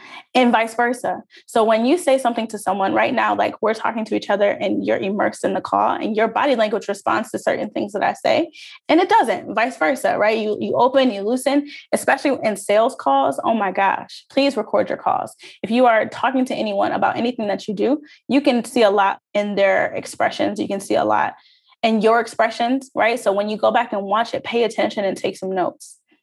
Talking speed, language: 225 wpm, English